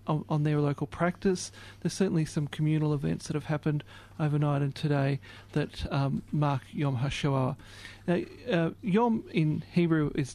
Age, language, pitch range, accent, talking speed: 40-59, English, 140-170 Hz, Australian, 145 wpm